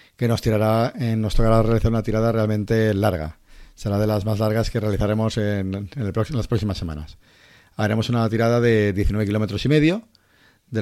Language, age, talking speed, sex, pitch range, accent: Spanish, 40-59, 195 wpm, male, 105-115 Hz, Spanish